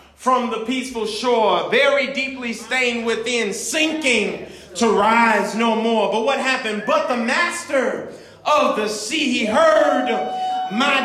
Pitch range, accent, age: 245-300 Hz, American, 40-59